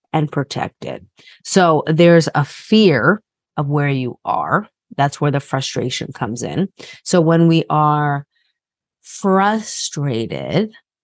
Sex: female